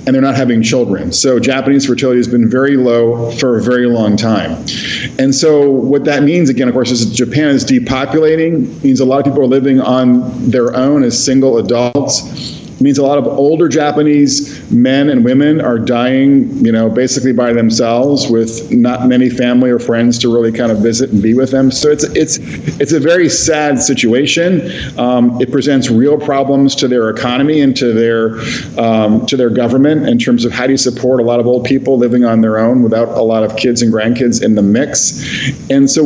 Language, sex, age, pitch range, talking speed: English, male, 50-69, 120-140 Hz, 205 wpm